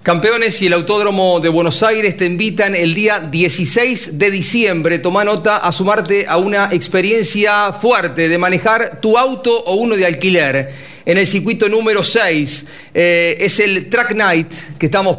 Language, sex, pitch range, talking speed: Spanish, male, 170-205 Hz, 165 wpm